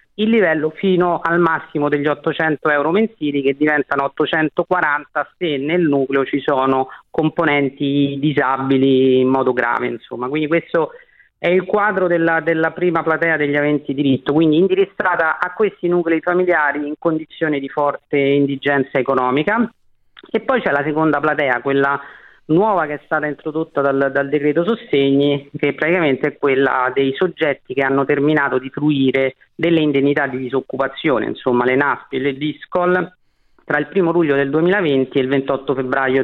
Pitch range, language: 140-170 Hz, Italian